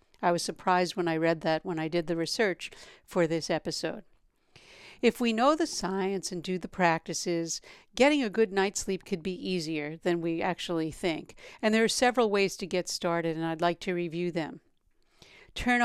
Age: 60-79